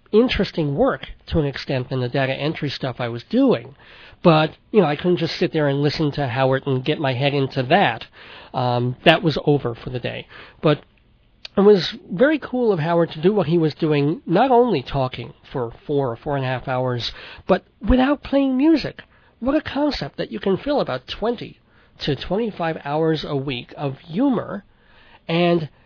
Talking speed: 195 wpm